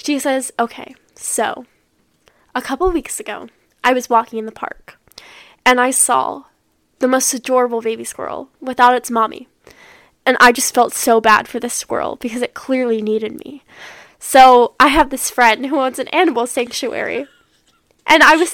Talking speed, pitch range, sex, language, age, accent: 170 wpm, 235-285 Hz, female, English, 10-29, American